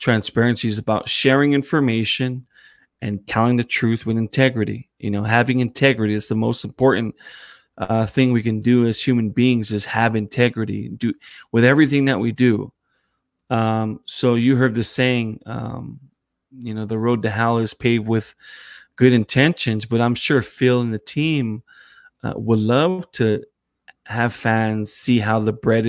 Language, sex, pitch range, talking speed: English, male, 110-130 Hz, 165 wpm